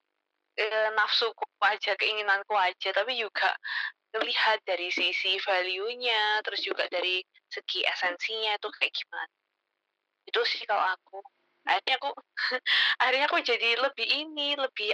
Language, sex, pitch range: Indonesian, female, 200-245 Hz